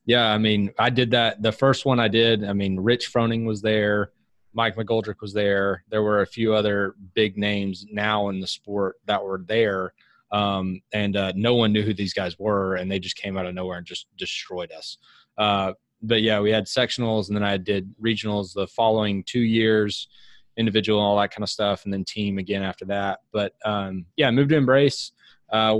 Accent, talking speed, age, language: American, 215 wpm, 20-39, English